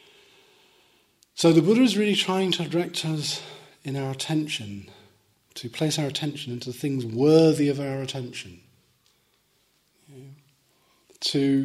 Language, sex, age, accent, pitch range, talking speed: English, male, 40-59, British, 110-140 Hz, 125 wpm